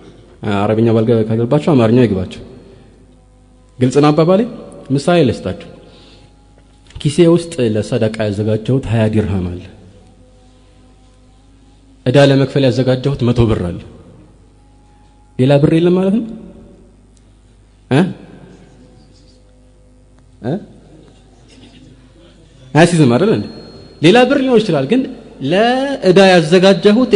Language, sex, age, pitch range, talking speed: Amharic, male, 30-49, 110-160 Hz, 45 wpm